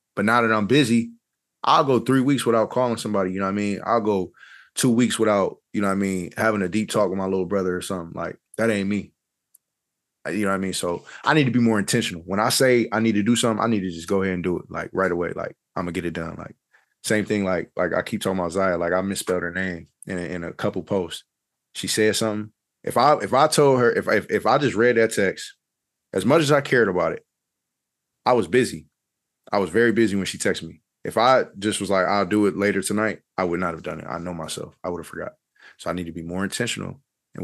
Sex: male